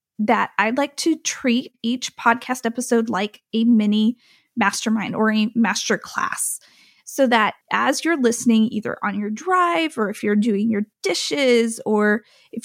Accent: American